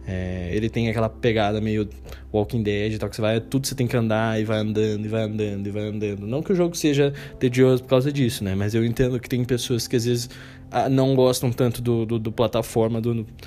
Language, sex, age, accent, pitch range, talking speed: Portuguese, male, 20-39, Brazilian, 110-140 Hz, 225 wpm